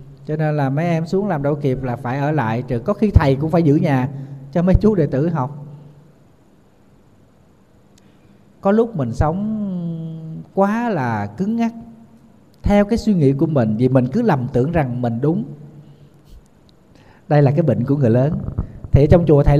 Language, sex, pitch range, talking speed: Vietnamese, male, 135-185 Hz, 185 wpm